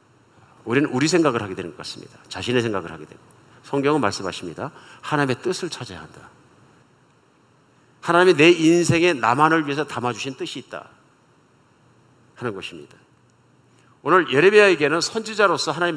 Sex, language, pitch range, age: male, Korean, 130-175 Hz, 50-69